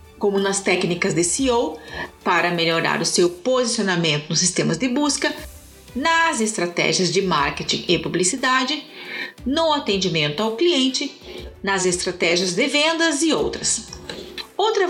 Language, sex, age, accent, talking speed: Portuguese, female, 40-59, Brazilian, 125 wpm